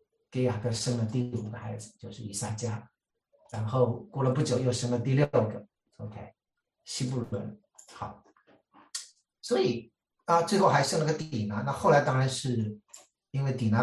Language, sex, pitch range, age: Chinese, male, 115-150 Hz, 60-79